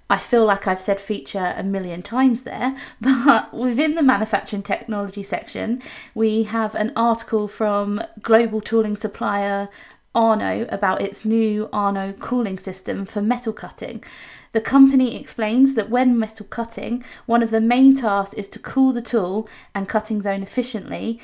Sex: female